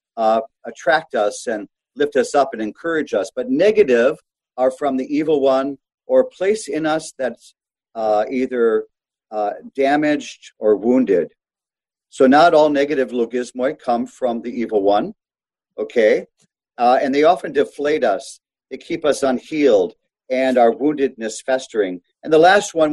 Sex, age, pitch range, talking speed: male, 50-69, 120-170 Hz, 150 wpm